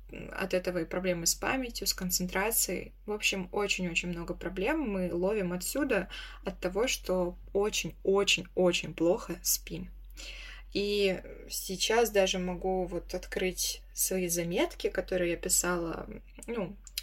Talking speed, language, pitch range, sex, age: 120 wpm, Russian, 180-225 Hz, female, 20-39